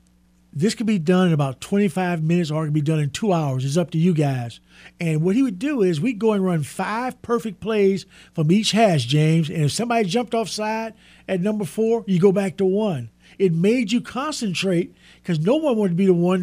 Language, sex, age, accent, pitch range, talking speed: English, male, 50-69, American, 160-205 Hz, 230 wpm